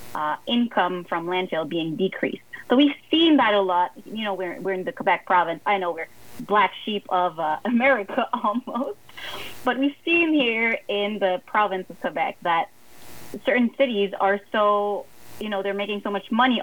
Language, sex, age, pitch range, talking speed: English, female, 30-49, 180-240 Hz, 180 wpm